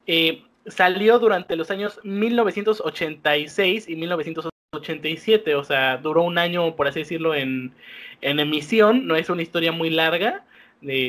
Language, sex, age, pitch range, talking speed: Spanish, male, 20-39, 150-200 Hz, 140 wpm